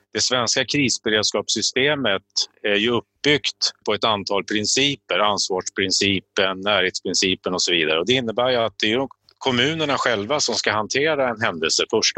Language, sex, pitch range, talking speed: English, male, 105-135 Hz, 155 wpm